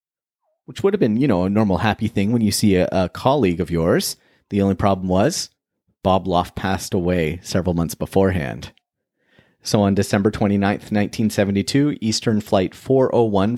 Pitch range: 90-110 Hz